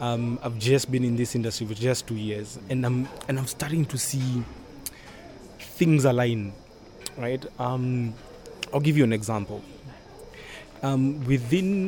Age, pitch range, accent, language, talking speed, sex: 20-39, 120-150 Hz, South African, English, 145 wpm, male